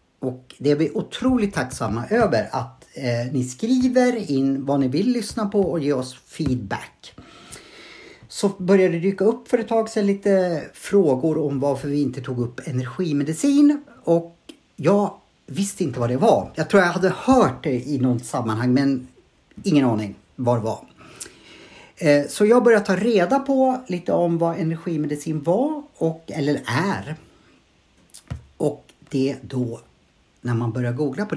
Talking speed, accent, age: 160 wpm, Norwegian, 50-69